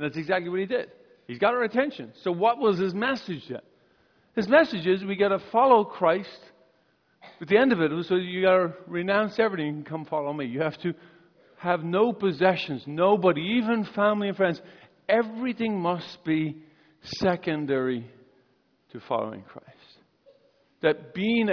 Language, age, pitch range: English, 50-69, 150-205 Hz